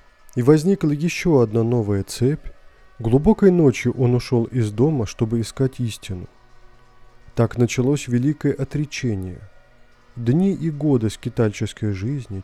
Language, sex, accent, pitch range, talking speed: Russian, male, native, 105-150 Hz, 115 wpm